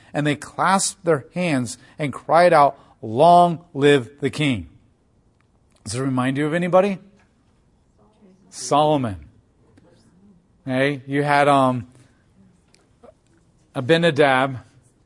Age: 40-59